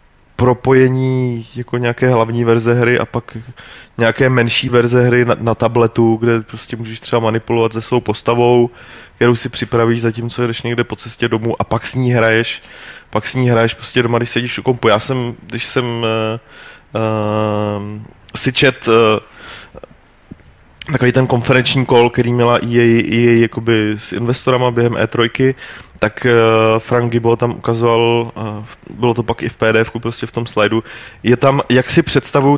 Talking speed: 165 wpm